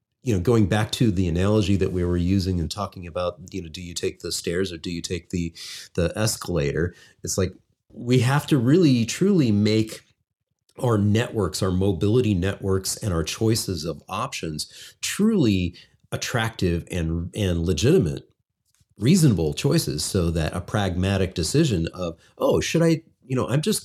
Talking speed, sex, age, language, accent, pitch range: 165 wpm, male, 40-59, English, American, 90-125 Hz